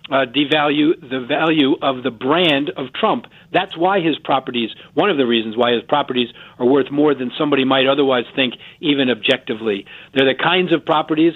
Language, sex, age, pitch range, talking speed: English, male, 50-69, 130-165 Hz, 185 wpm